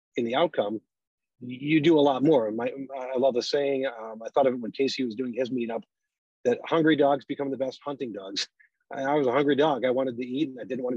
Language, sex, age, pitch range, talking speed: English, male, 40-59, 120-145 Hz, 240 wpm